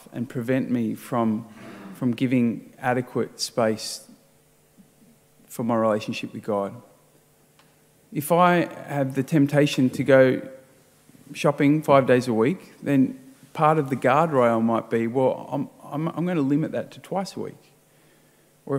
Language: English